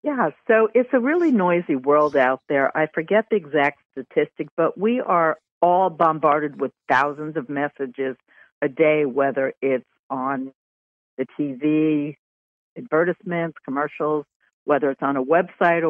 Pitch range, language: 150-215 Hz, English